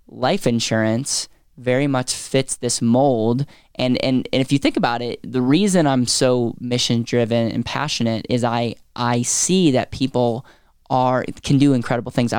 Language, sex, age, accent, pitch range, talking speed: English, male, 10-29, American, 115-130 Hz, 160 wpm